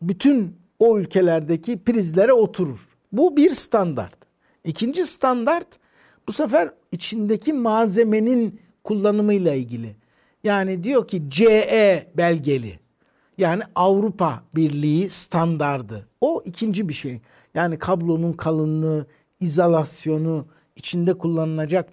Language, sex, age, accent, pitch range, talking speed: Turkish, male, 60-79, native, 160-215 Hz, 95 wpm